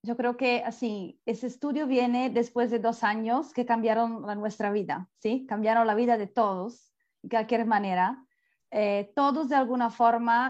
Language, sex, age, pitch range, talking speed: Spanish, female, 30-49, 230-280 Hz, 170 wpm